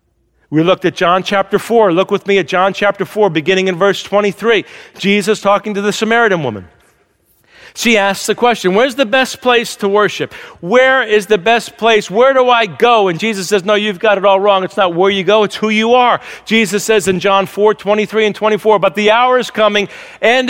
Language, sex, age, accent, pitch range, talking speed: English, male, 40-59, American, 195-245 Hz, 215 wpm